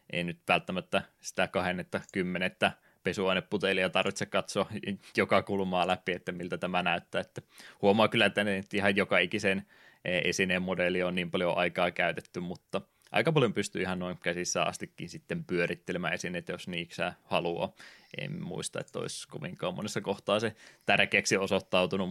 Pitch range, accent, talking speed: 90-100 Hz, native, 145 wpm